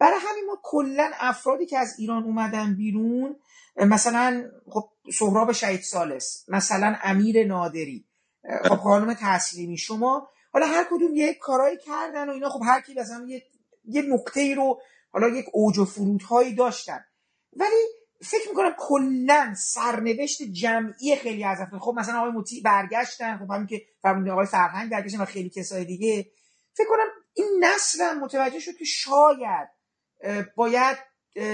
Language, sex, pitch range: Persian, male, 215-270 Hz